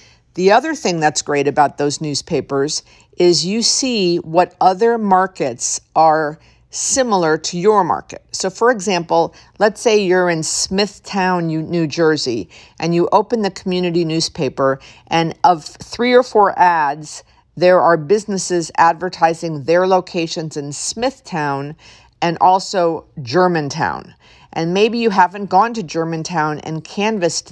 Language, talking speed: English, 135 wpm